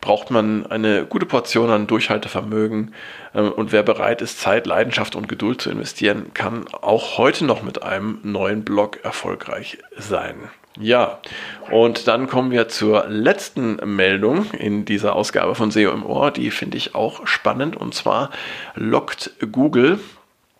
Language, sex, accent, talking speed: German, male, German, 150 wpm